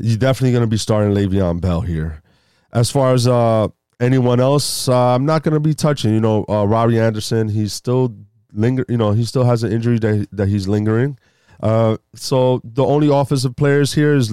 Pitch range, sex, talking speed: 100-130 Hz, male, 205 wpm